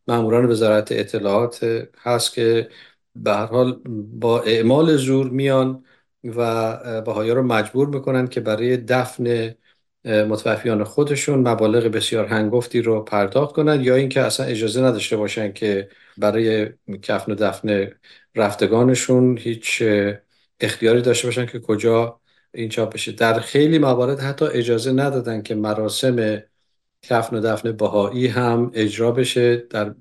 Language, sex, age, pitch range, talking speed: Persian, male, 50-69, 110-125 Hz, 130 wpm